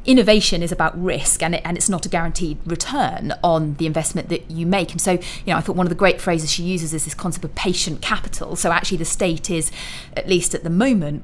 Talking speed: 250 wpm